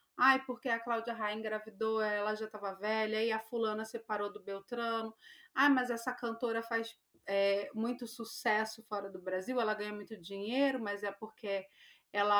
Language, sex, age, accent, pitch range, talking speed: Portuguese, female, 30-49, Brazilian, 205-250 Hz, 165 wpm